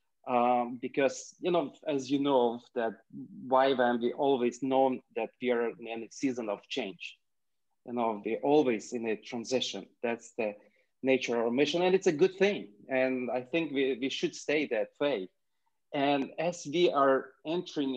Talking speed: 175 wpm